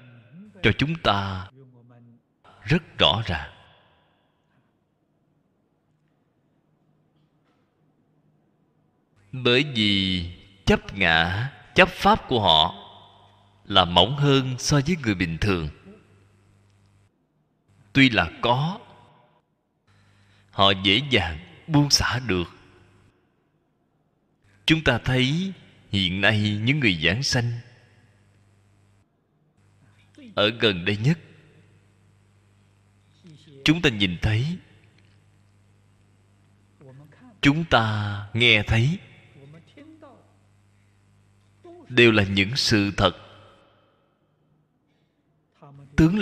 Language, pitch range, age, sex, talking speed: Vietnamese, 100-135 Hz, 20-39, male, 75 wpm